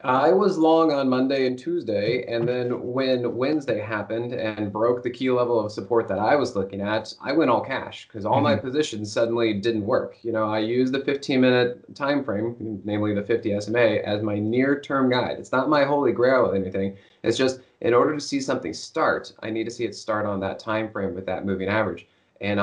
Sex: male